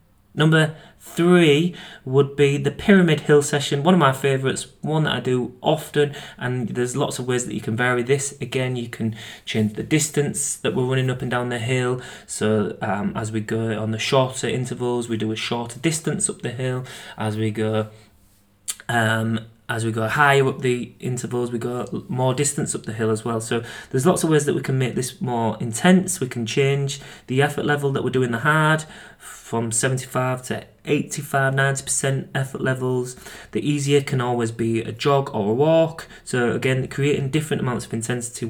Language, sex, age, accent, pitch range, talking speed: English, male, 30-49, British, 115-145 Hz, 195 wpm